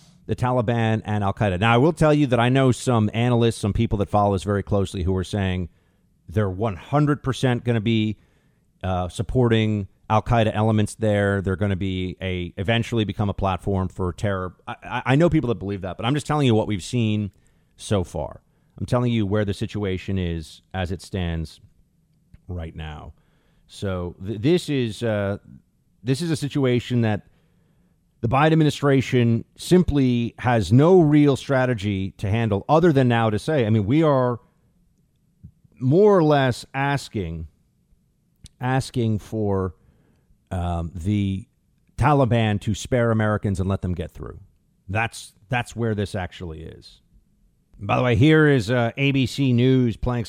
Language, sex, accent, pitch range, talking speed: English, male, American, 100-130 Hz, 160 wpm